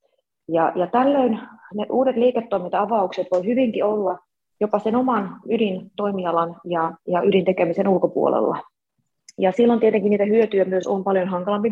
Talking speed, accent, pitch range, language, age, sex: 140 wpm, Finnish, 180-215 Hz, English, 30-49, female